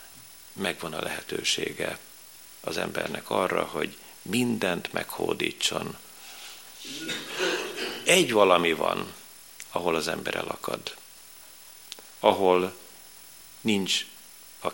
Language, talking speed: Hungarian, 75 wpm